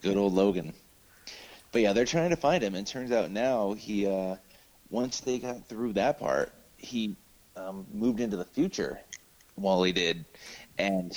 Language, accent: English, American